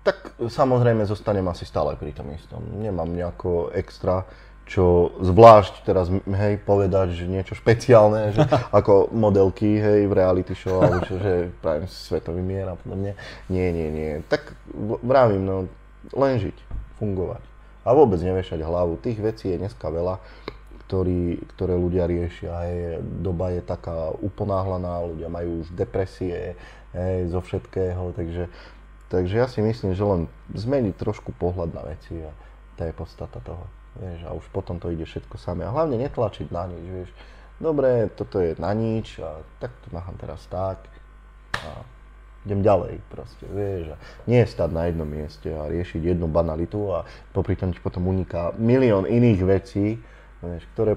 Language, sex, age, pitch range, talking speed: Slovak, male, 20-39, 85-105 Hz, 160 wpm